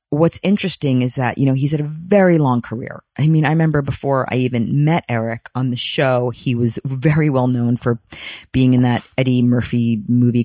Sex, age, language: female, 40-59, English